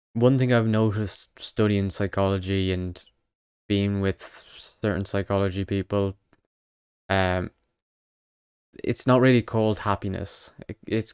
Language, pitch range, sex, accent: English, 95-110 Hz, male, British